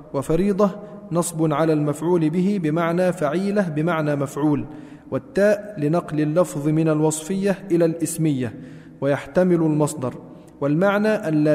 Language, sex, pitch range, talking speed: Arabic, male, 150-185 Hz, 110 wpm